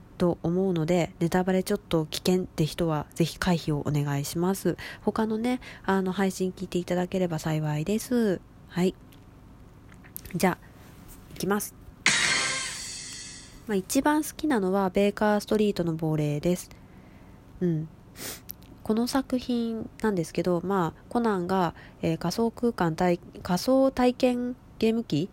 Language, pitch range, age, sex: Japanese, 165-215 Hz, 20-39, female